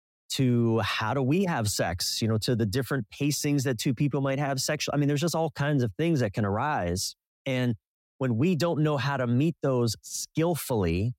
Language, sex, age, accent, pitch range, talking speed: English, male, 30-49, American, 105-135 Hz, 210 wpm